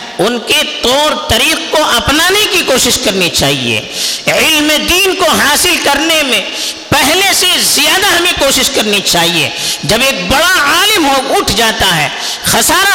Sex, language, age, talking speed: female, Urdu, 50-69, 150 wpm